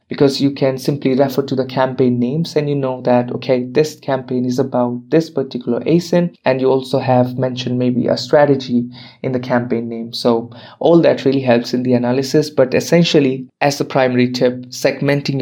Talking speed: 185 wpm